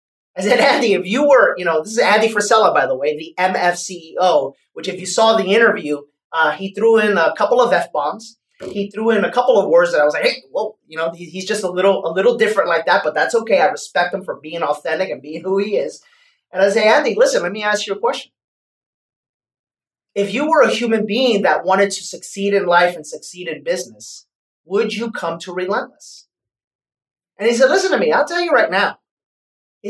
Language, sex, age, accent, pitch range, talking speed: English, male, 30-49, American, 180-255 Hz, 230 wpm